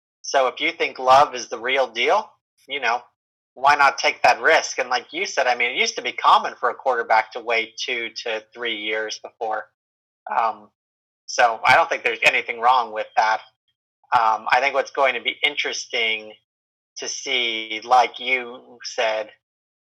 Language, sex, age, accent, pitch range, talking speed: English, male, 30-49, American, 110-125 Hz, 180 wpm